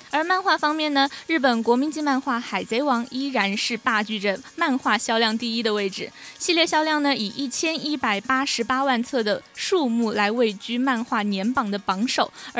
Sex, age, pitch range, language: female, 20-39, 220-290 Hz, Chinese